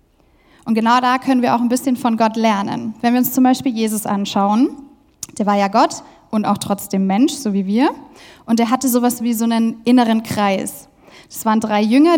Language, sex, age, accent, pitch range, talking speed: German, female, 10-29, German, 220-265 Hz, 205 wpm